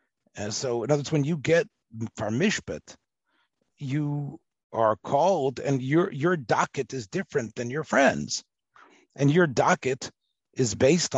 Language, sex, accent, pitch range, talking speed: English, male, American, 115-155 Hz, 140 wpm